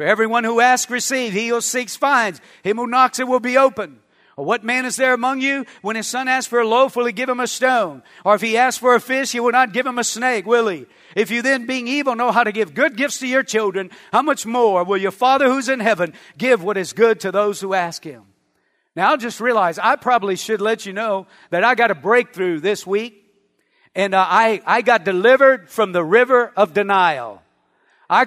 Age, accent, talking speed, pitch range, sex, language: 50-69, American, 240 wpm, 220-270 Hz, male, English